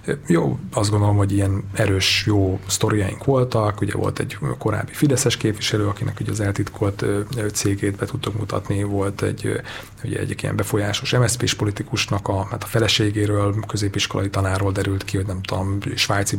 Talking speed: 155 wpm